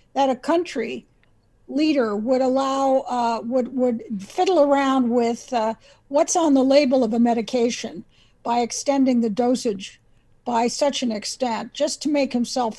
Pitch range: 240-295 Hz